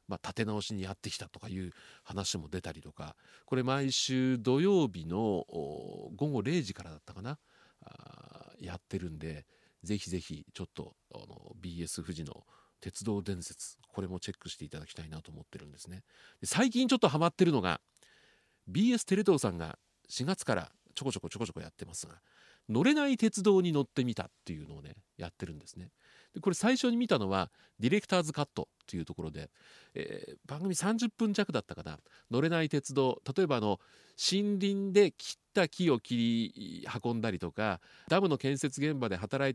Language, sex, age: Japanese, male, 40-59